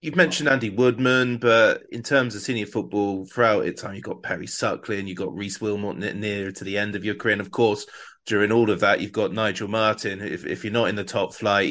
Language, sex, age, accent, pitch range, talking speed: English, male, 20-39, British, 100-125 Hz, 245 wpm